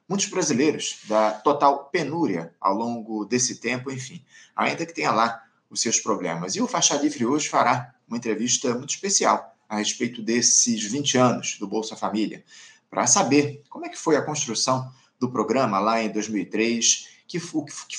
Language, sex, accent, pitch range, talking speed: Portuguese, male, Brazilian, 115-155 Hz, 165 wpm